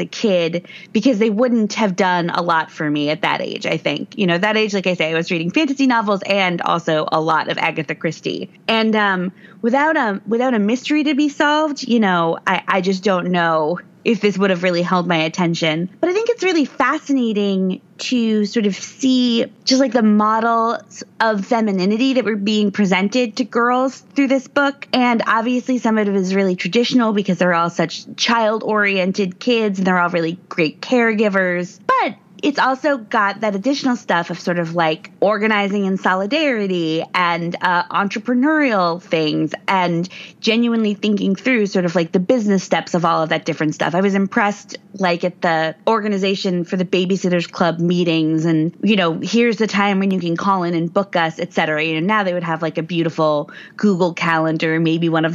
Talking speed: 195 wpm